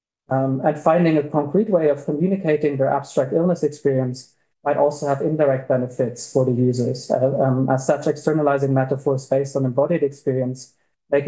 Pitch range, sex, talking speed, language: 135-155 Hz, male, 165 wpm, English